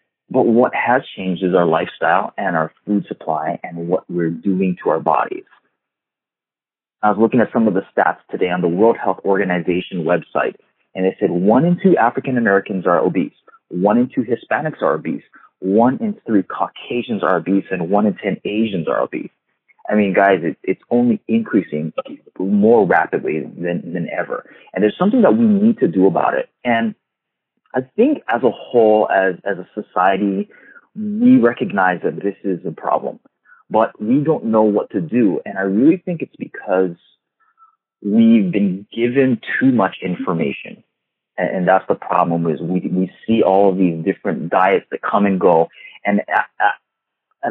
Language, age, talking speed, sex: English, 30-49, 175 wpm, male